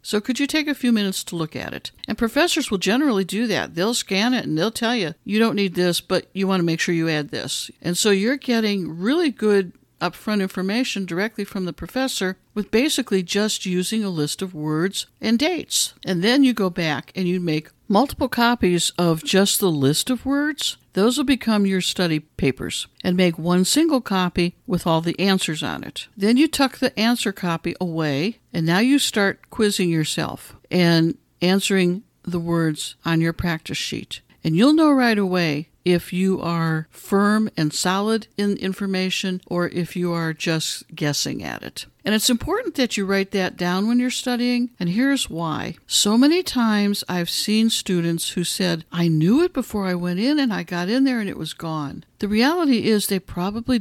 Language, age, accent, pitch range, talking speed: English, 60-79, American, 175-235 Hz, 195 wpm